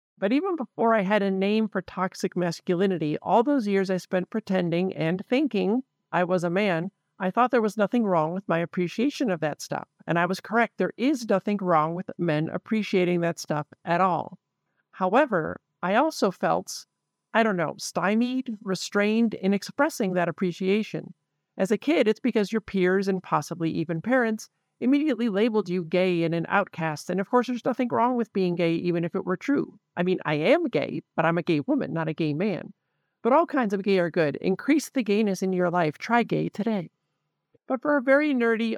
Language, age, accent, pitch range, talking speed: English, 50-69, American, 175-225 Hz, 200 wpm